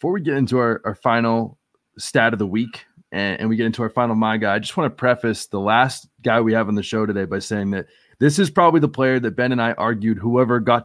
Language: English